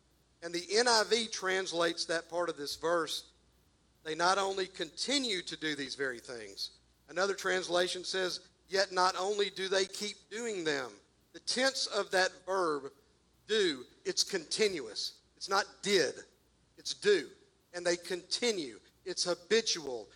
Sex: male